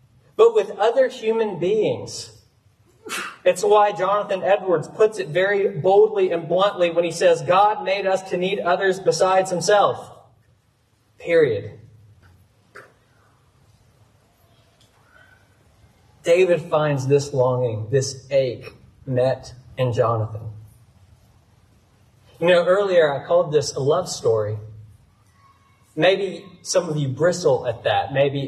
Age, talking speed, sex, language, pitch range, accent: 30-49, 110 wpm, male, English, 115-175 Hz, American